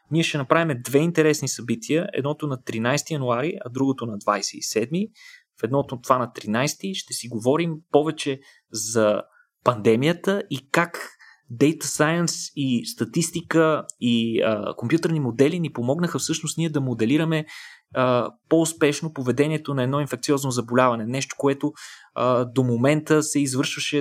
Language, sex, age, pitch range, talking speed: Bulgarian, male, 20-39, 120-155 Hz, 135 wpm